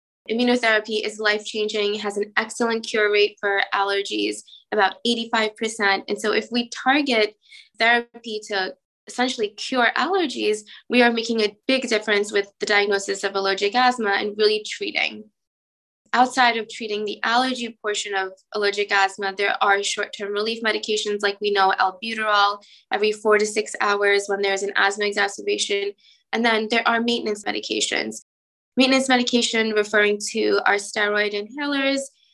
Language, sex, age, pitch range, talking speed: English, female, 20-39, 205-235 Hz, 145 wpm